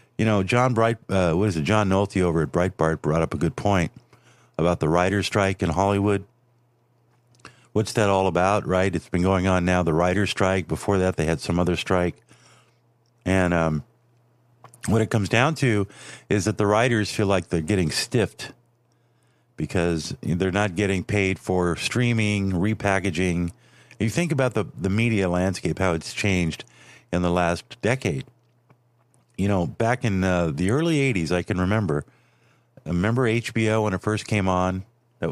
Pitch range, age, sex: 90-120 Hz, 50-69, male